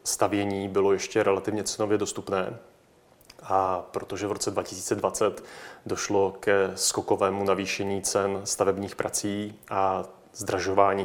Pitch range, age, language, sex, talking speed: 95-105 Hz, 30-49, Czech, male, 110 wpm